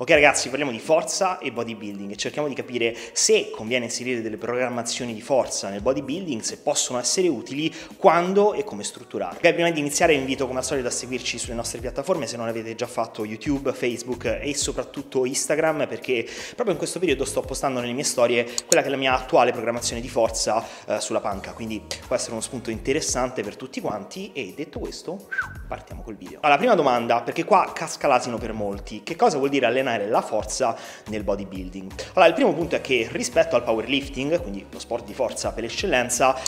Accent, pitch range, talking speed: native, 115-155 Hz, 200 wpm